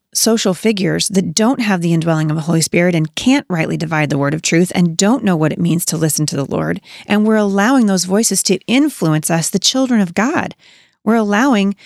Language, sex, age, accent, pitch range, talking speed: English, female, 30-49, American, 165-210 Hz, 225 wpm